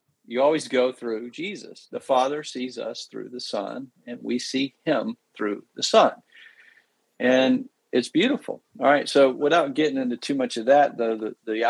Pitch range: 120-160 Hz